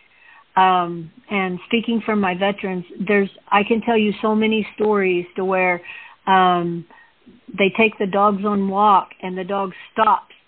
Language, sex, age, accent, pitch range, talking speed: English, female, 50-69, American, 185-210 Hz, 155 wpm